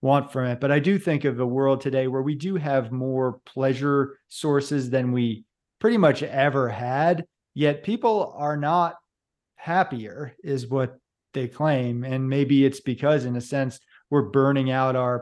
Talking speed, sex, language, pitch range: 175 wpm, male, English, 125-150 Hz